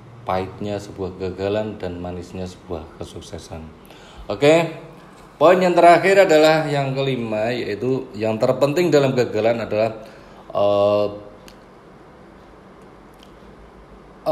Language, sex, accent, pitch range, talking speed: Indonesian, male, native, 100-135 Hz, 90 wpm